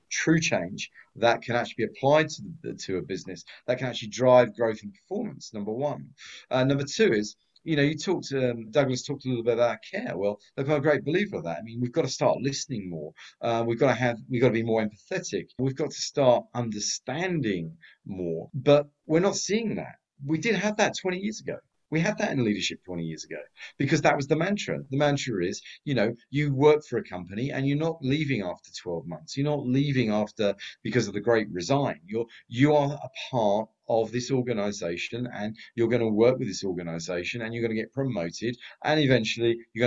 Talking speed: 215 wpm